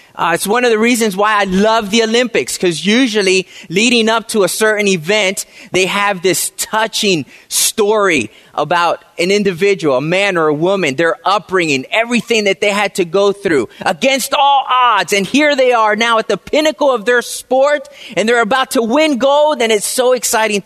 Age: 30-49